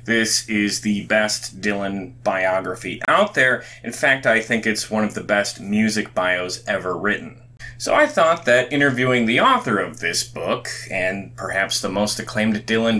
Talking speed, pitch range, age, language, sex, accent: 170 wpm, 105-125 Hz, 30-49, English, male, American